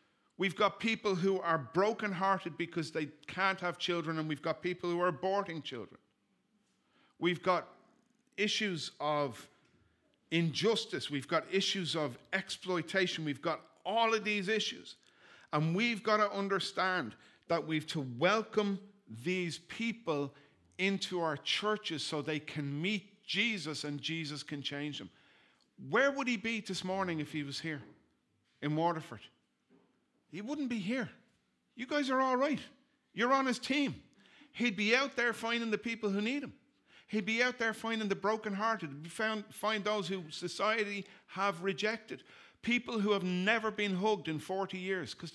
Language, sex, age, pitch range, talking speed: English, male, 50-69, 165-225 Hz, 155 wpm